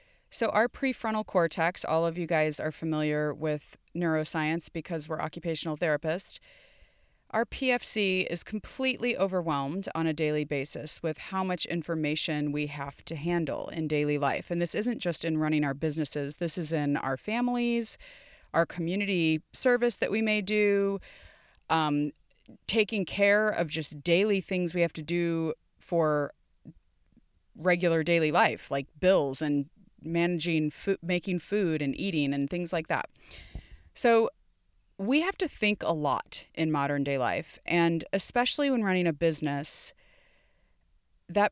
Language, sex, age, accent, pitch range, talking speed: English, female, 30-49, American, 155-200 Hz, 145 wpm